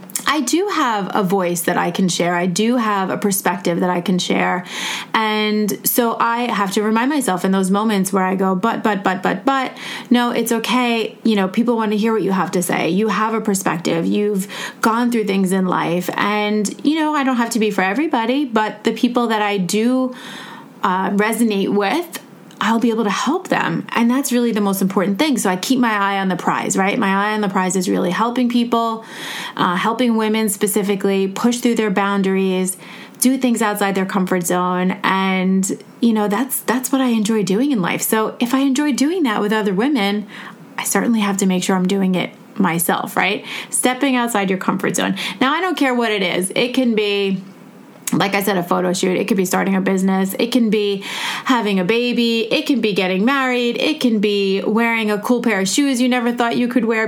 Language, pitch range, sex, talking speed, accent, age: English, 190-240 Hz, female, 220 wpm, American, 30-49